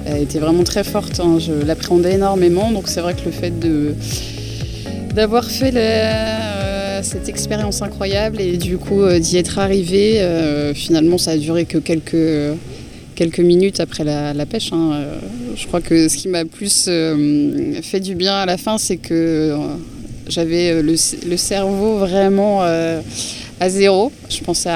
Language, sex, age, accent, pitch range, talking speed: French, female, 20-39, French, 155-195 Hz, 175 wpm